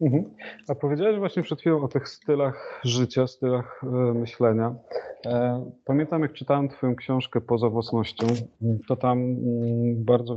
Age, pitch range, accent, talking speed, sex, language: 30-49, 105-120 Hz, native, 120 wpm, male, Polish